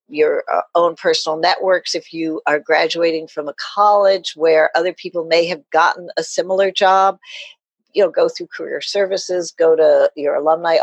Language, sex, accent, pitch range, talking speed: English, female, American, 160-205 Hz, 170 wpm